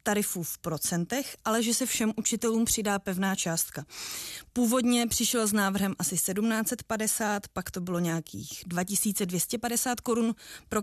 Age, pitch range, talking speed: 20-39, 195-230 Hz, 135 wpm